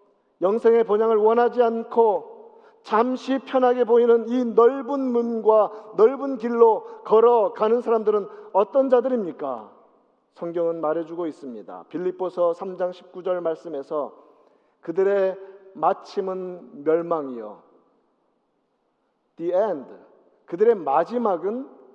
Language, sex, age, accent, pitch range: Korean, male, 50-69, native, 190-250 Hz